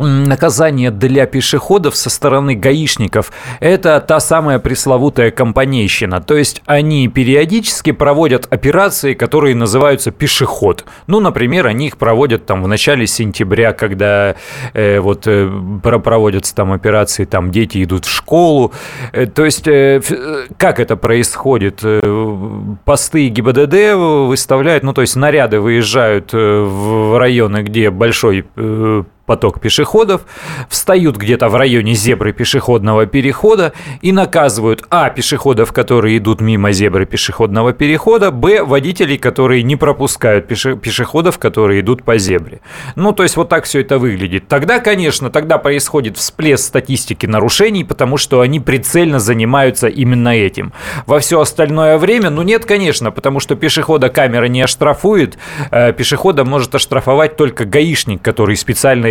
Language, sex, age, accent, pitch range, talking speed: Russian, male, 30-49, native, 110-150 Hz, 135 wpm